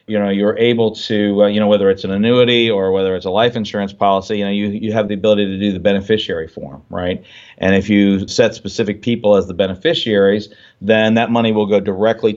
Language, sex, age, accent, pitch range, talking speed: English, male, 40-59, American, 100-120 Hz, 230 wpm